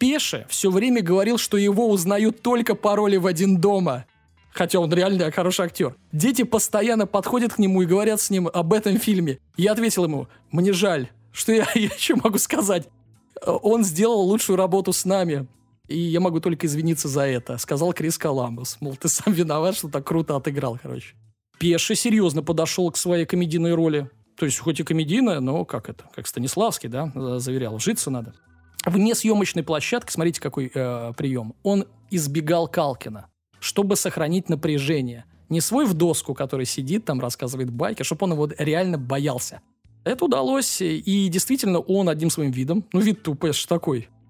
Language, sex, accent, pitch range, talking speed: Russian, male, native, 135-195 Hz, 170 wpm